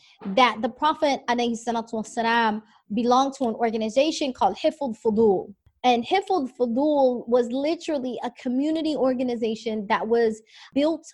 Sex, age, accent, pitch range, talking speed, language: female, 20-39, American, 225-270 Hz, 115 wpm, English